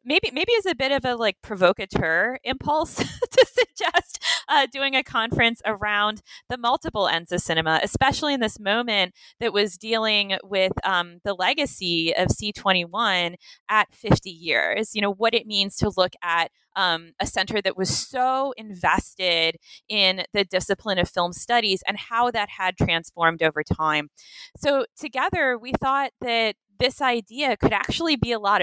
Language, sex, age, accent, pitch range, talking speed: English, female, 20-39, American, 190-260 Hz, 165 wpm